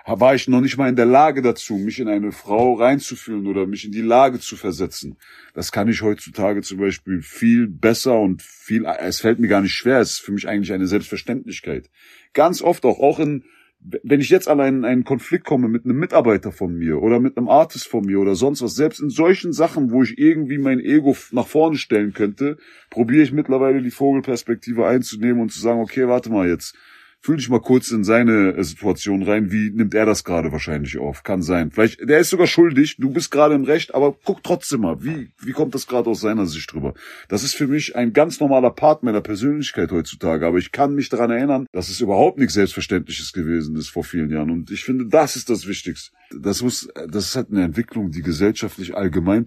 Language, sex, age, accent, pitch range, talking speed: German, male, 40-59, German, 95-135 Hz, 220 wpm